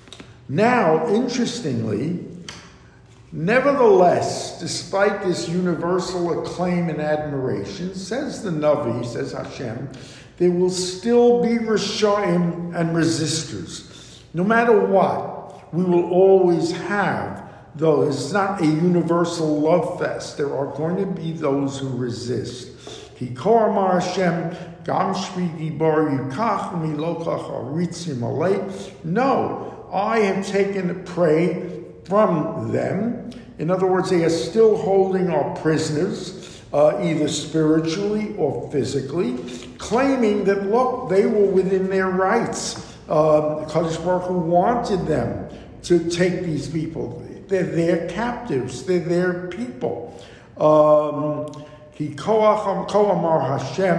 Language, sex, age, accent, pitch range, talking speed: English, male, 50-69, American, 155-195 Hz, 100 wpm